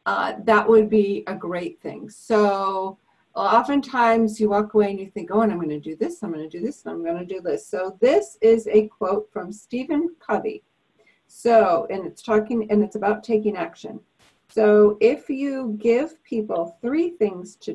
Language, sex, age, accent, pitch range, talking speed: English, female, 50-69, American, 200-240 Hz, 195 wpm